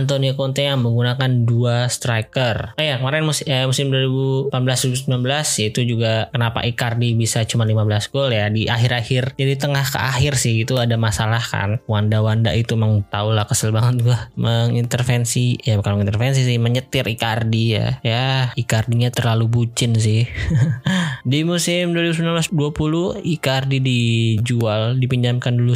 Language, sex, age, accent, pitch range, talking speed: Indonesian, male, 20-39, native, 115-140 Hz, 145 wpm